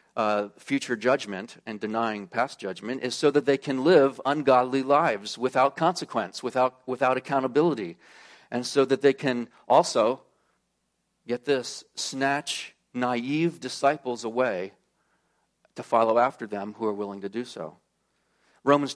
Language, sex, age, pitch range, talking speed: English, male, 40-59, 115-140 Hz, 135 wpm